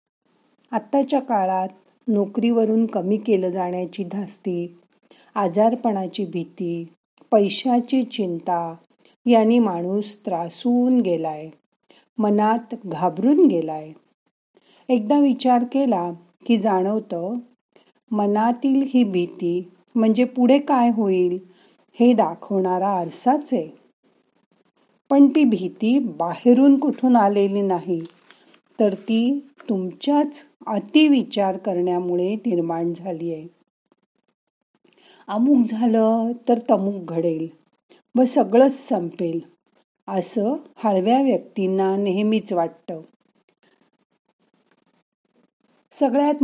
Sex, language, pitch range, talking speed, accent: female, Marathi, 185-245 Hz, 85 wpm, native